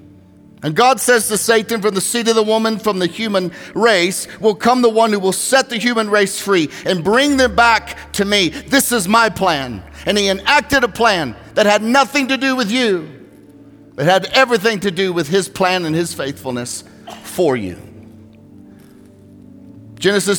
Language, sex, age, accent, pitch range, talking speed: English, male, 50-69, American, 175-245 Hz, 180 wpm